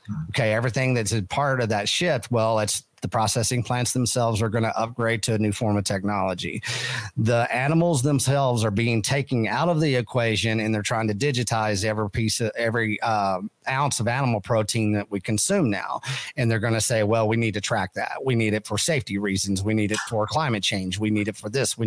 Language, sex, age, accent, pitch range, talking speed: English, male, 40-59, American, 110-125 Hz, 220 wpm